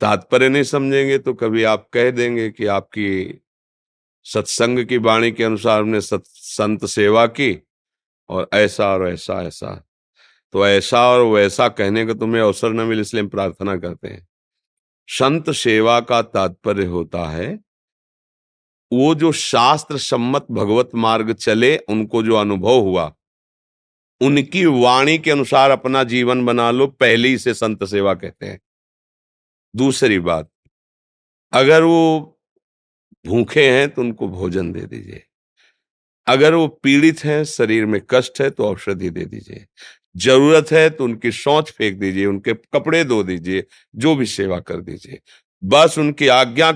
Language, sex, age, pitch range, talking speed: Hindi, male, 50-69, 100-135 Hz, 145 wpm